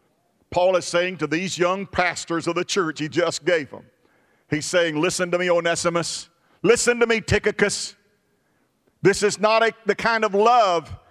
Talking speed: 165 wpm